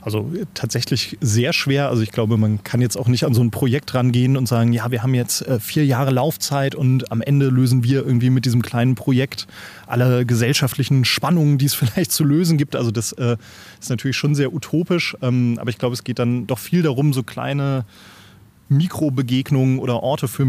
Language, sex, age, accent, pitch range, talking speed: German, male, 30-49, German, 120-140 Hz, 195 wpm